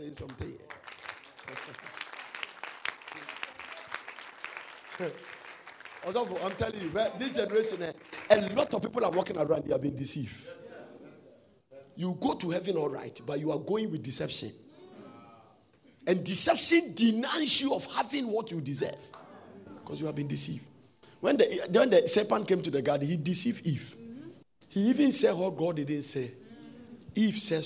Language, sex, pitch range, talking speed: English, male, 140-205 Hz, 140 wpm